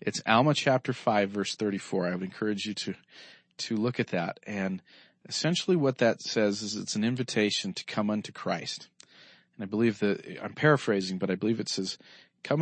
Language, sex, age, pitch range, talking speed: English, male, 40-59, 100-125 Hz, 190 wpm